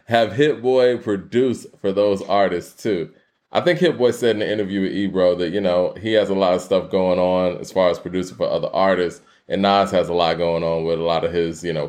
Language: English